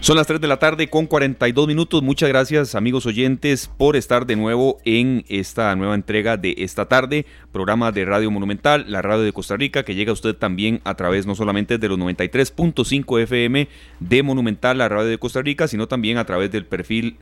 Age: 30-49